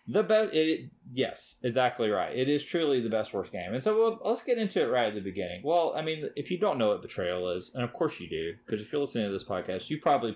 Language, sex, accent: English, male, American